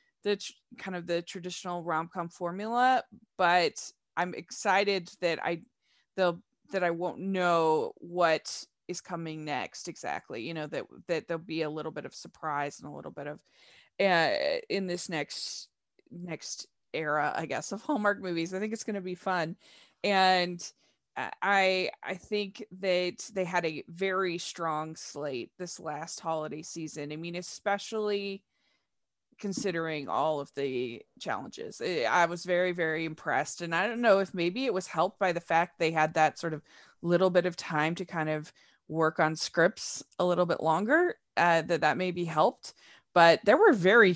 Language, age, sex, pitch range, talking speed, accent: English, 20-39, female, 160-195 Hz, 170 wpm, American